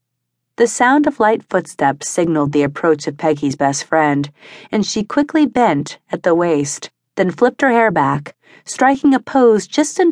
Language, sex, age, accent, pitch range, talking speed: English, female, 30-49, American, 140-230 Hz, 170 wpm